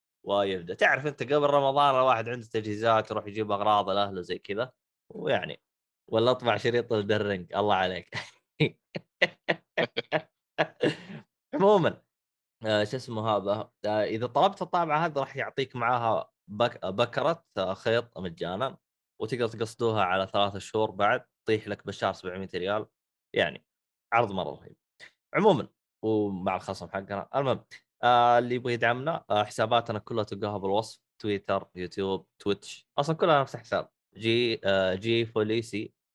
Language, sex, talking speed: Arabic, male, 120 wpm